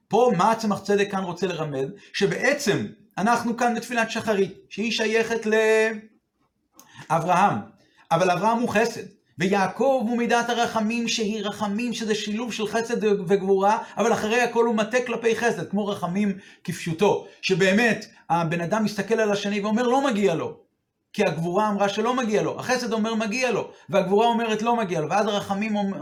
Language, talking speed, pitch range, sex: Hebrew, 155 wpm, 195-230 Hz, male